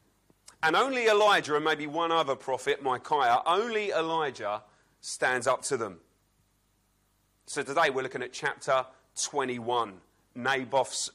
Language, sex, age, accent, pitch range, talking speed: English, male, 30-49, British, 110-155 Hz, 125 wpm